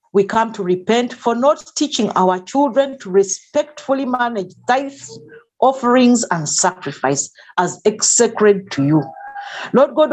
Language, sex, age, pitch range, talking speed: English, female, 50-69, 195-275 Hz, 130 wpm